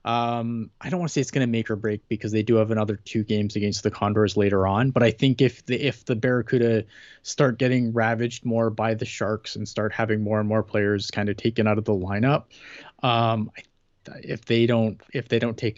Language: English